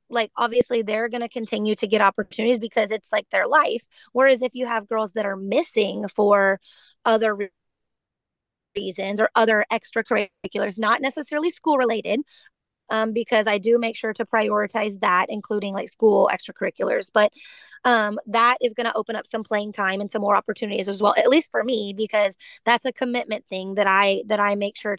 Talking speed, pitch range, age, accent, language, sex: 185 wpm, 210-245 Hz, 20-39, American, English, female